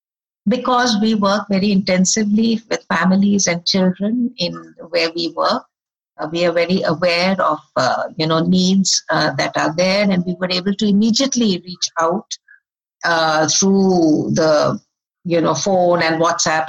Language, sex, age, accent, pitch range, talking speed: English, female, 60-79, Indian, 175-215 Hz, 155 wpm